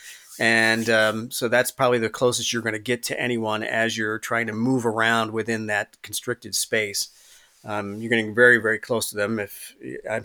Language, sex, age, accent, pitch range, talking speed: English, male, 40-59, American, 105-125 Hz, 195 wpm